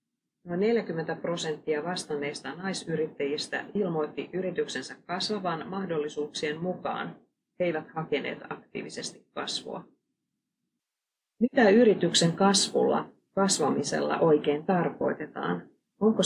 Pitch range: 155-200 Hz